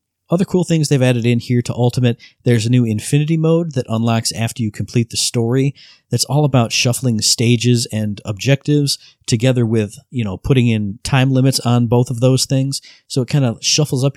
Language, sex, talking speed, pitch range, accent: English, male, 200 wpm, 115-140 Hz, American